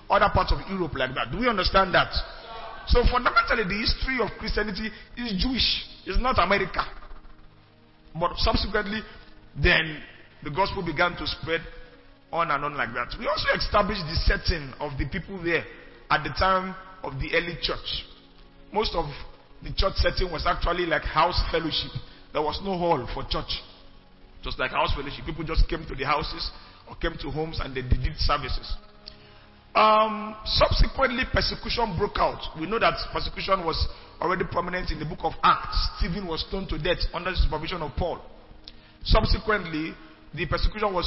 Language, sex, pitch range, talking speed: English, male, 150-195 Hz, 170 wpm